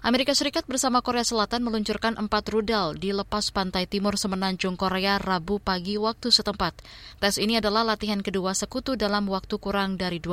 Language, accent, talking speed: Indonesian, native, 165 wpm